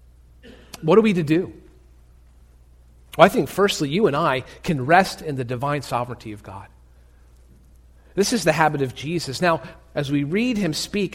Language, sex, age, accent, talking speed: English, male, 40-59, American, 170 wpm